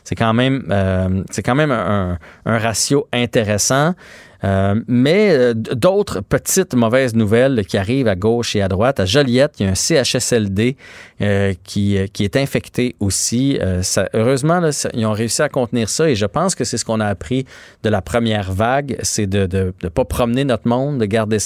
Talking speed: 200 wpm